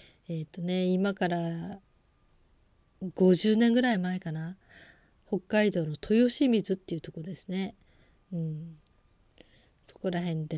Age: 40-59